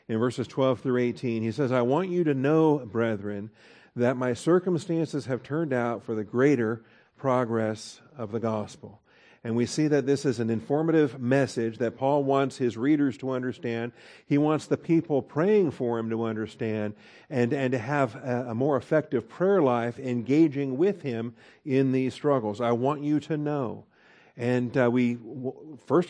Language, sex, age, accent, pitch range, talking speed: English, male, 50-69, American, 115-140 Hz, 175 wpm